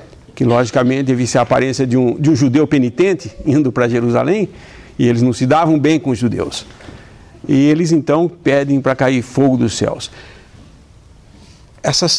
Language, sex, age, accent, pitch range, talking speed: English, male, 60-79, Brazilian, 120-170 Hz, 160 wpm